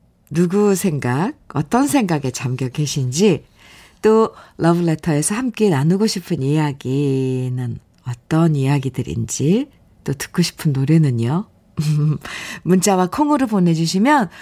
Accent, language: native, Korean